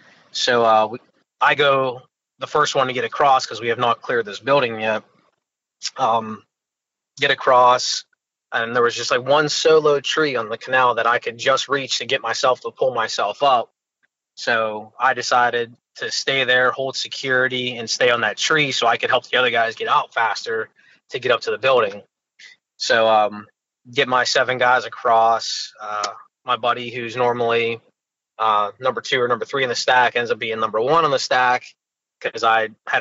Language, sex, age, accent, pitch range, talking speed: English, male, 20-39, American, 115-140 Hz, 190 wpm